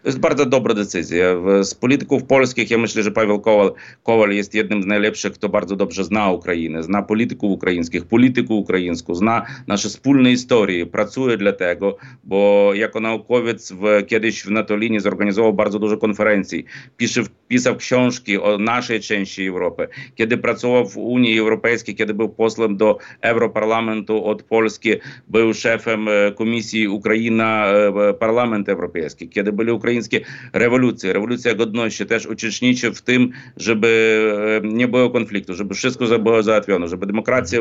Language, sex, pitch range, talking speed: Polish, male, 105-120 Hz, 140 wpm